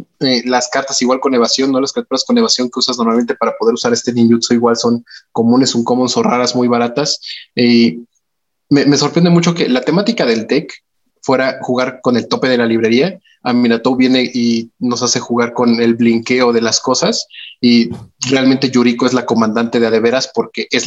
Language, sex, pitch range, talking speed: Spanish, male, 115-130 Hz, 200 wpm